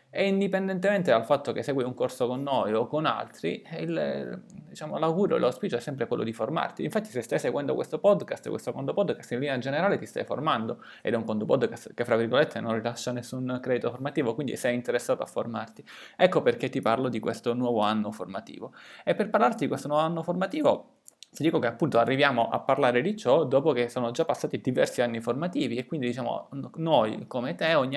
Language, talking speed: Italian, 210 wpm